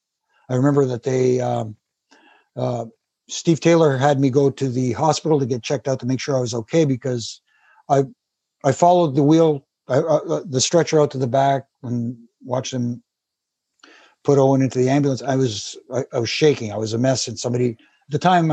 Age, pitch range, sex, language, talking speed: 60-79, 115-140 Hz, male, English, 195 wpm